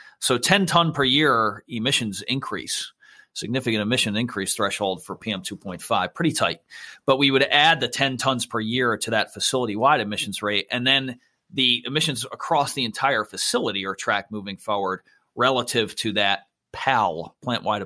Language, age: English, 40-59